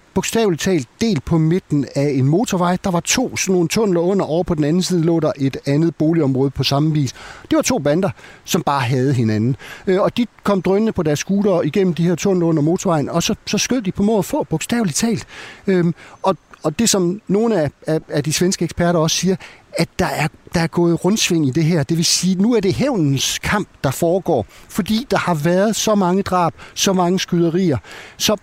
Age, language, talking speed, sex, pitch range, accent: 60-79, Danish, 220 wpm, male, 140-185 Hz, native